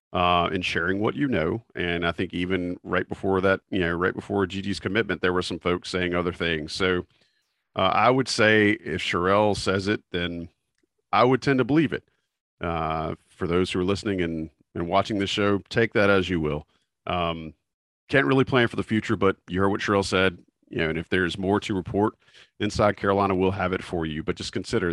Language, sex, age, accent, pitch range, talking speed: English, male, 40-59, American, 90-105 Hz, 215 wpm